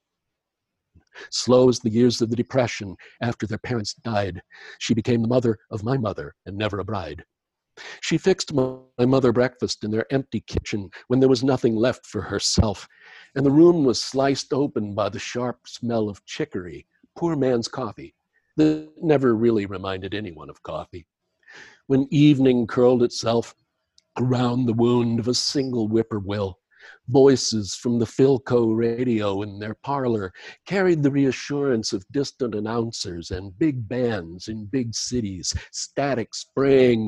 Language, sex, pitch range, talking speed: English, male, 105-130 Hz, 150 wpm